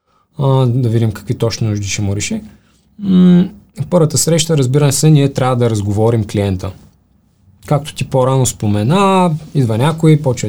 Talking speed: 155 wpm